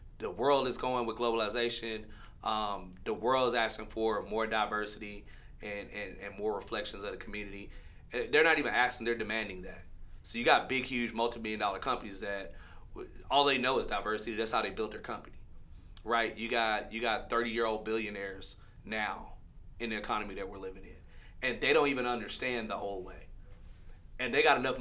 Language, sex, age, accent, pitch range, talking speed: English, male, 30-49, American, 100-120 Hz, 185 wpm